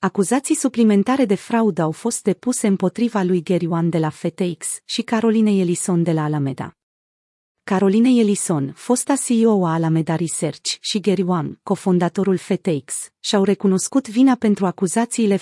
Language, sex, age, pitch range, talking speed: Romanian, female, 30-49, 175-220 Hz, 145 wpm